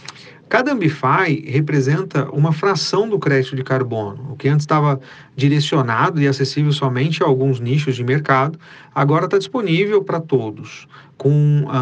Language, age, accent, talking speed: Portuguese, 40-59, Brazilian, 145 wpm